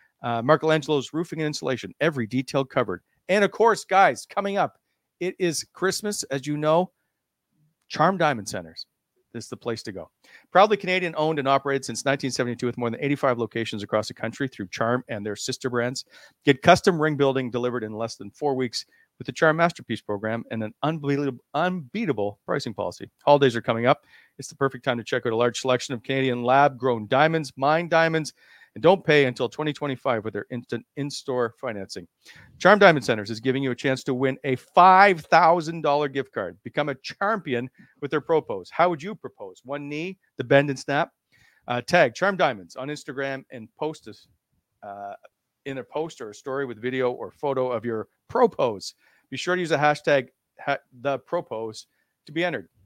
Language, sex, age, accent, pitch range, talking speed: English, male, 40-59, American, 120-160 Hz, 185 wpm